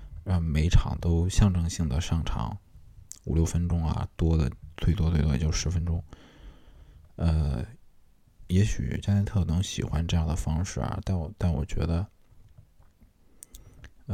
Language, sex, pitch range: Chinese, male, 80-95 Hz